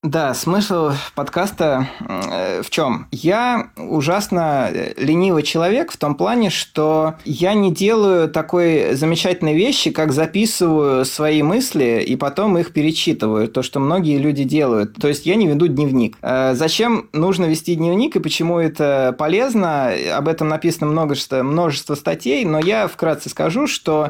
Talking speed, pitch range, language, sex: 140 wpm, 145-185 Hz, Russian, male